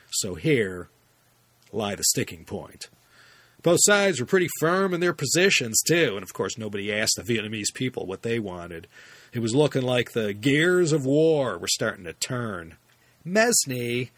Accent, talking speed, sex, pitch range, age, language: American, 165 wpm, male, 110-145 Hz, 40-59, English